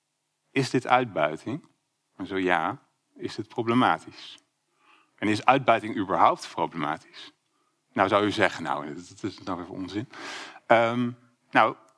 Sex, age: male, 40-59